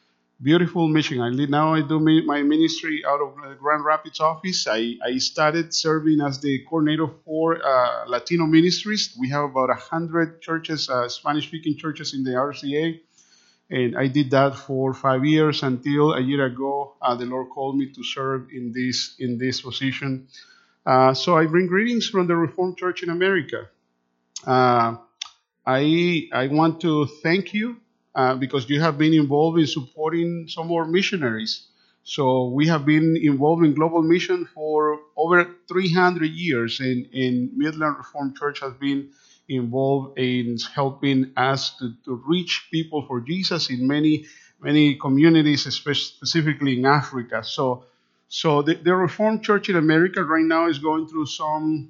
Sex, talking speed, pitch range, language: male, 160 wpm, 130-160 Hz, English